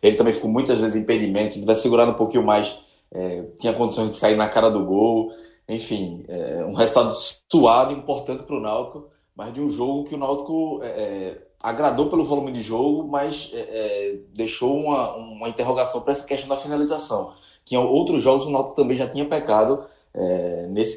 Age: 20-39